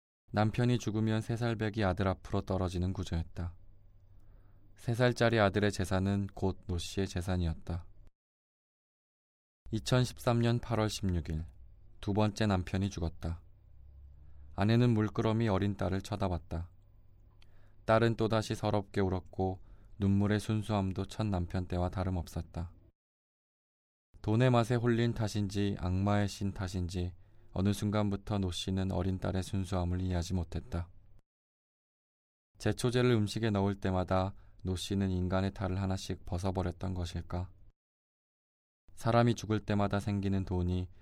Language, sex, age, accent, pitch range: Korean, male, 20-39, native, 90-105 Hz